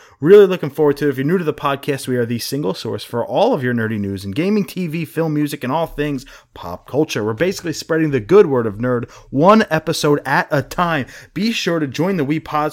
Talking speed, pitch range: 245 wpm, 125-160 Hz